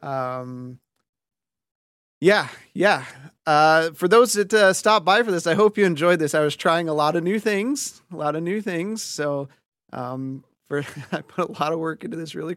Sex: male